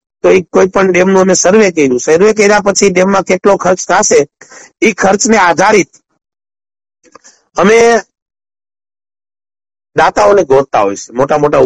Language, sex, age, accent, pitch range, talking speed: Gujarati, male, 60-79, native, 140-180 Hz, 55 wpm